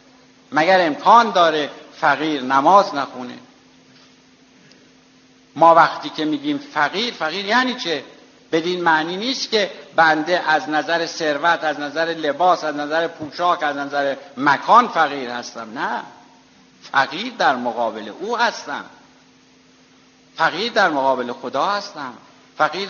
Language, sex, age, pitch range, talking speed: Persian, male, 60-79, 160-180 Hz, 120 wpm